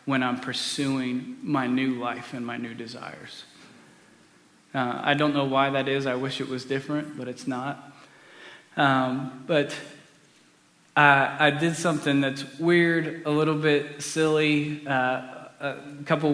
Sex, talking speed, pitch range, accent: male, 150 wpm, 135-150 Hz, American